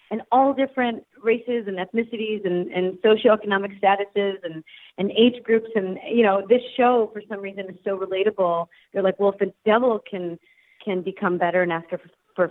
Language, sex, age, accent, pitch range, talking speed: English, female, 30-49, American, 175-215 Hz, 190 wpm